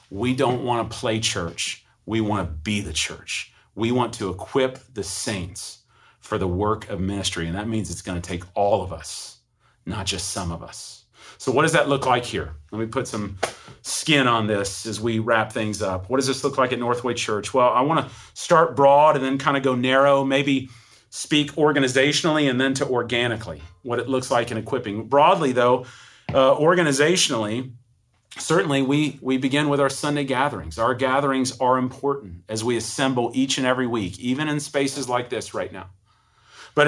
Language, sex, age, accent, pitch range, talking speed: English, male, 40-59, American, 110-145 Hz, 195 wpm